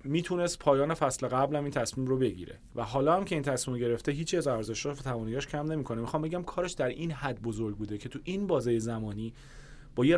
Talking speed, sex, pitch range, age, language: 210 wpm, male, 115-140 Hz, 30-49, Persian